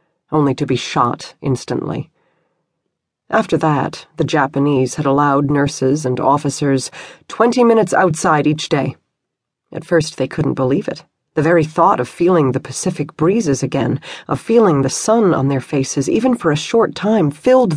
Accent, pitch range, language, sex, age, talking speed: American, 135-170 Hz, English, female, 40-59, 160 wpm